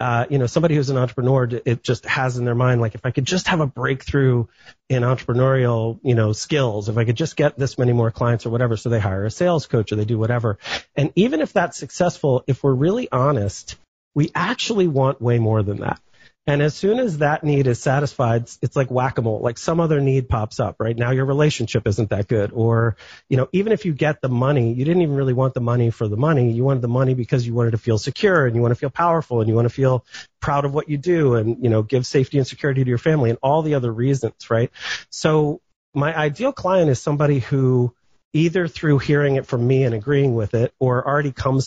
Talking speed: 240 wpm